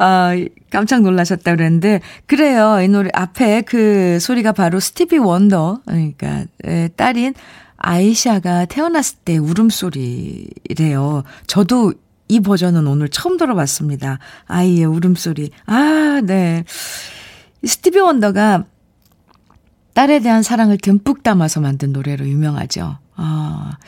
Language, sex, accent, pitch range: Korean, female, native, 170-225 Hz